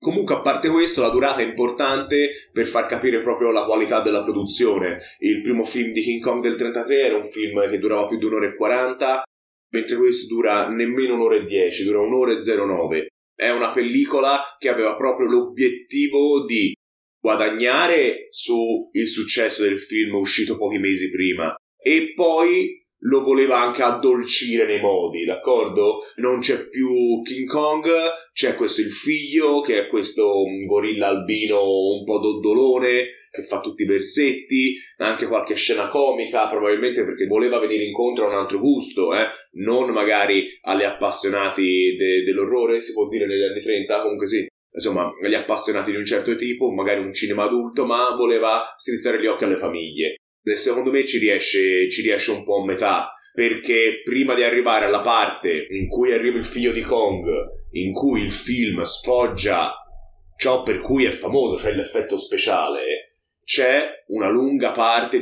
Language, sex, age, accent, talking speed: Italian, male, 30-49, native, 165 wpm